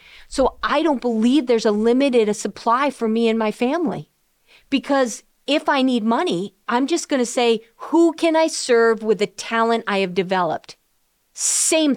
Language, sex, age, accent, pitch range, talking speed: English, female, 40-59, American, 205-280 Hz, 170 wpm